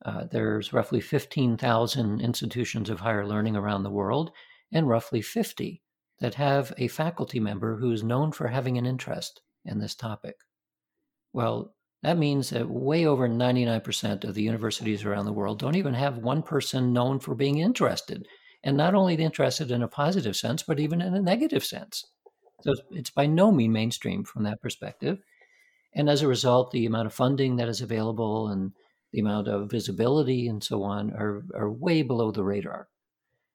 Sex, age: male, 50-69